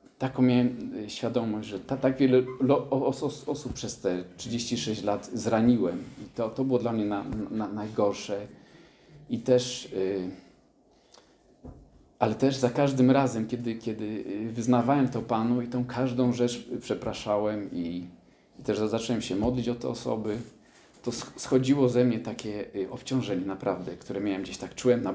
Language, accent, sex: English, Polish, male